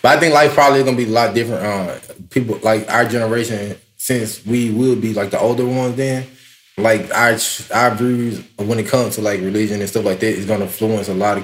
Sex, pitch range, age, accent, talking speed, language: male, 115-145 Hz, 20-39, American, 245 wpm, English